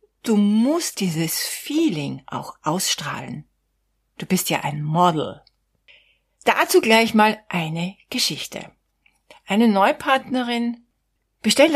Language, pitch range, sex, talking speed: German, 170-240 Hz, female, 95 wpm